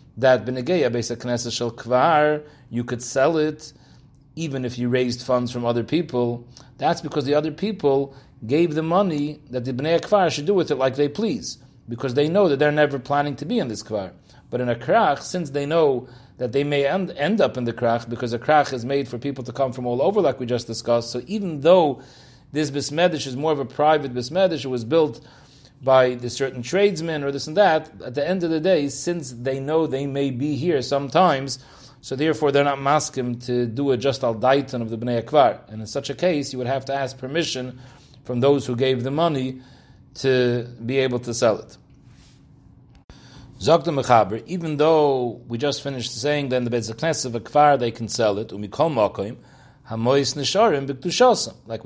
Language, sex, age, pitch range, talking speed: English, male, 40-59, 125-150 Hz, 190 wpm